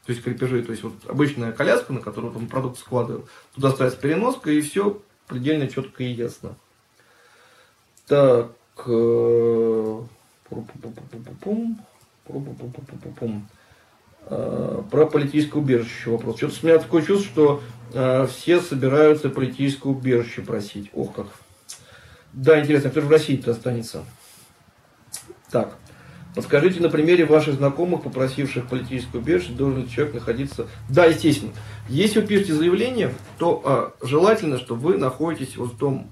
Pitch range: 120-155 Hz